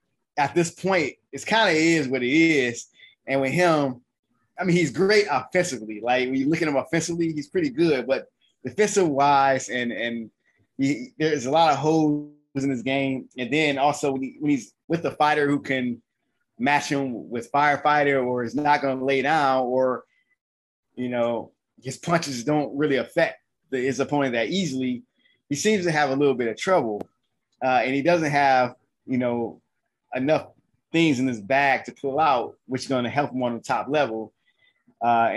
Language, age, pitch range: English, 20-39, 125-155 Hz